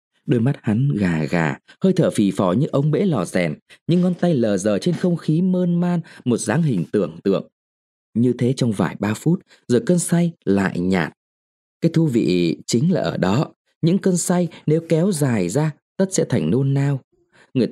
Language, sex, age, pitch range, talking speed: Vietnamese, male, 20-39, 120-180 Hz, 205 wpm